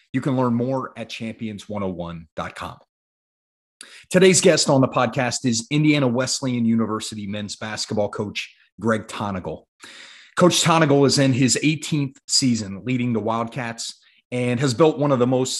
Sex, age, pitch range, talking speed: male, 30-49, 115-145 Hz, 140 wpm